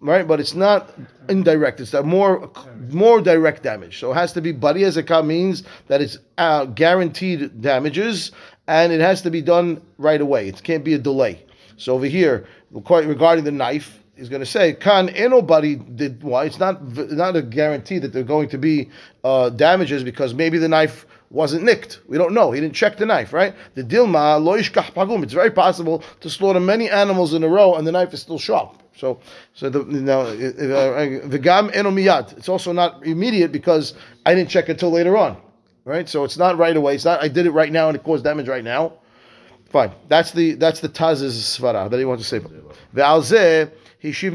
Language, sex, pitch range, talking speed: English, male, 140-175 Hz, 200 wpm